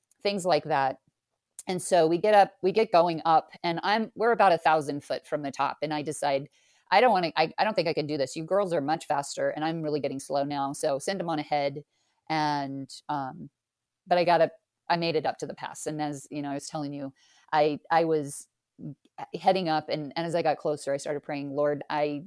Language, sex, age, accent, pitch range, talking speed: English, female, 40-59, American, 145-175 Hz, 245 wpm